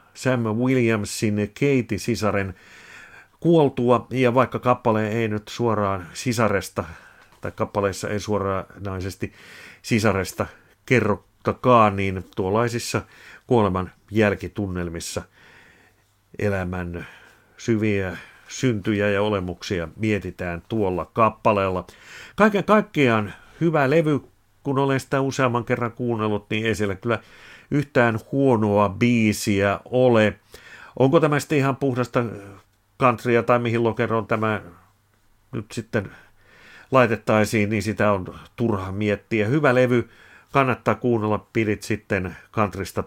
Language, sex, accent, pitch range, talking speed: Finnish, male, native, 100-120 Hz, 100 wpm